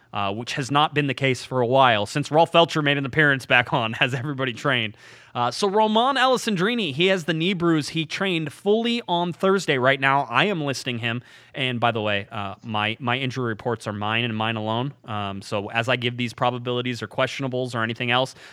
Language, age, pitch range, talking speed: English, 20-39, 110-140 Hz, 215 wpm